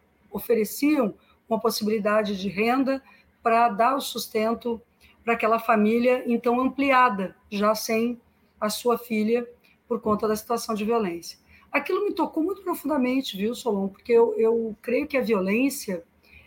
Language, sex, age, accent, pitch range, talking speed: Portuguese, female, 50-69, Brazilian, 215-260 Hz, 140 wpm